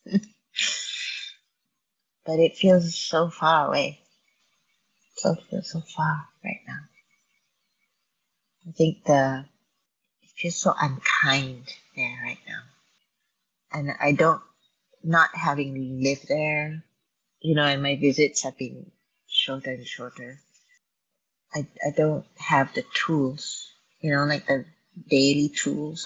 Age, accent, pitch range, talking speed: 30-49, American, 140-195 Hz, 115 wpm